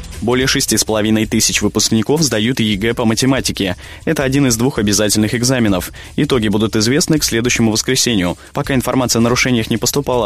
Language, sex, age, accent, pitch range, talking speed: Russian, male, 20-39, native, 105-130 Hz, 165 wpm